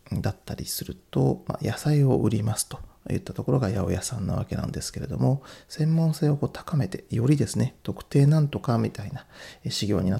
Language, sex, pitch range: Japanese, male, 110-150 Hz